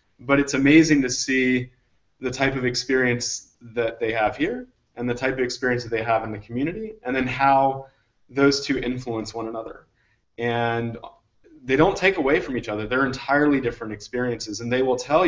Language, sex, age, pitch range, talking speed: English, male, 30-49, 115-135 Hz, 190 wpm